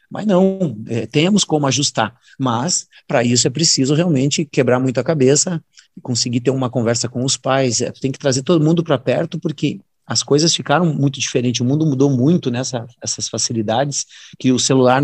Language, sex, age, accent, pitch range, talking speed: Portuguese, male, 30-49, Brazilian, 120-145 Hz, 195 wpm